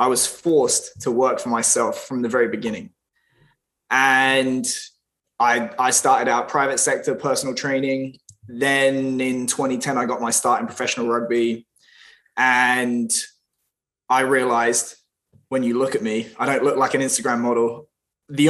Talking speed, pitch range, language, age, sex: 150 wpm, 120-145 Hz, English, 20-39, male